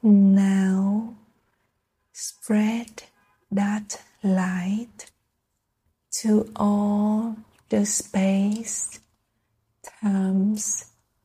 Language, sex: Vietnamese, female